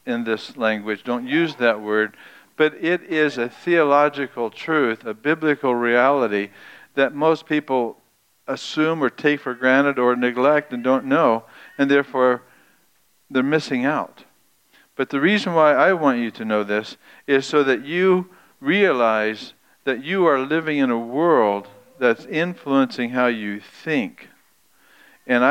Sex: male